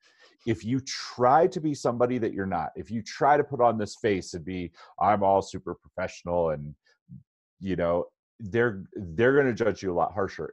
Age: 30-49